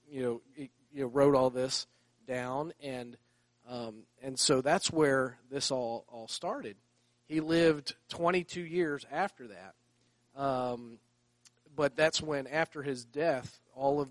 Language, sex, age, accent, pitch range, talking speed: English, male, 40-59, American, 120-150 Hz, 140 wpm